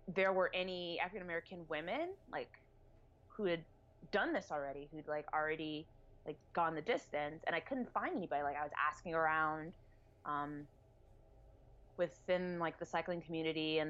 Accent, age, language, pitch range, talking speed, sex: American, 20-39, English, 135-180 Hz, 155 wpm, female